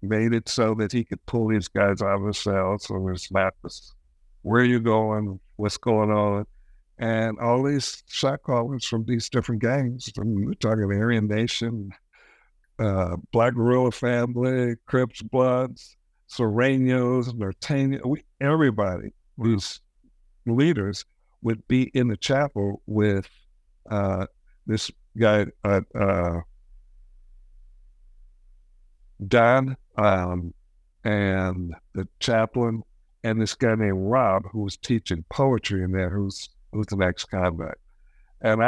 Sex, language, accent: male, English, American